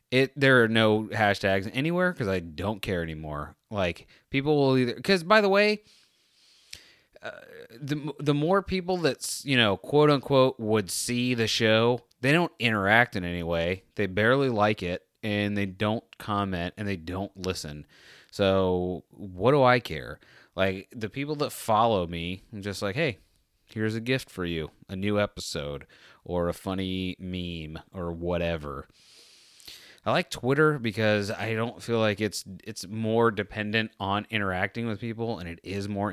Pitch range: 95-120 Hz